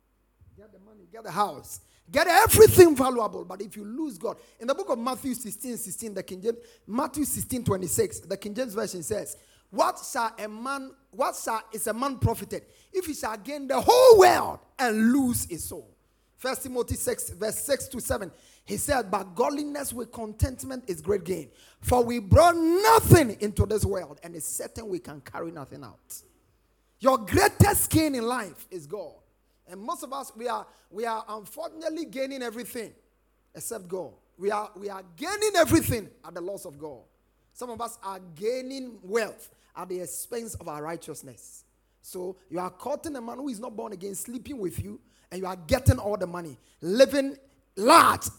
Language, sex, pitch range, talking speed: English, male, 200-275 Hz, 180 wpm